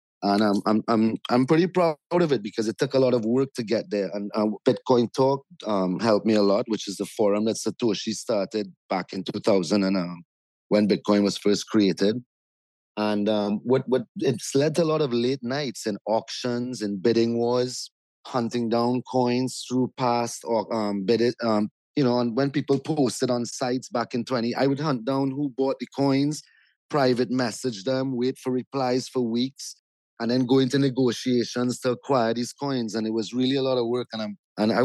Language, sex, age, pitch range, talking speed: English, male, 30-49, 105-130 Hz, 200 wpm